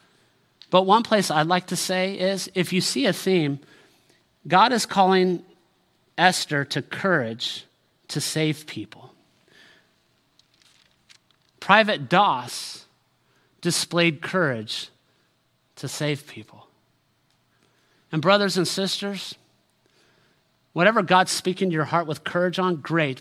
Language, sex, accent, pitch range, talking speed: English, male, American, 130-170 Hz, 110 wpm